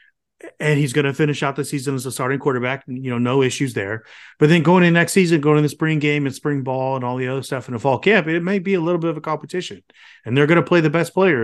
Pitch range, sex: 120-160 Hz, male